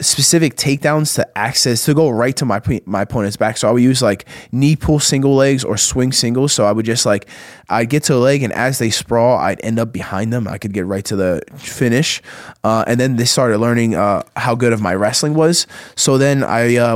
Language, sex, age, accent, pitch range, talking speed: English, male, 20-39, American, 105-130 Hz, 235 wpm